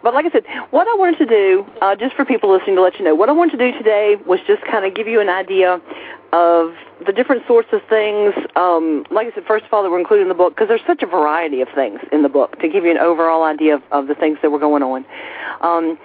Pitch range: 160-250 Hz